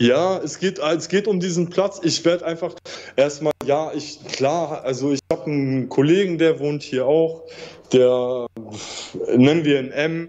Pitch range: 125-145 Hz